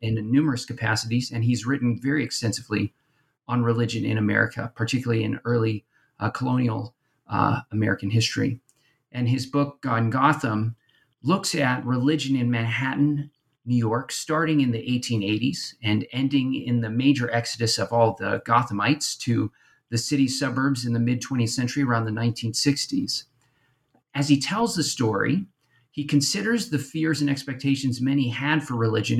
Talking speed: 150 wpm